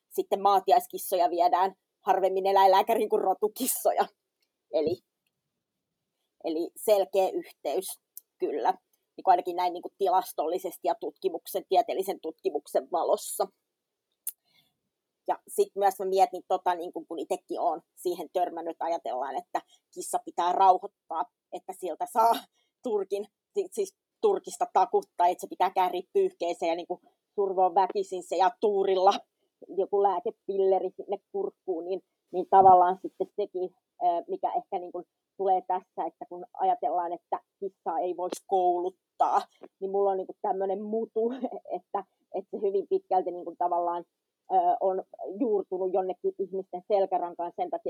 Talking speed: 130 wpm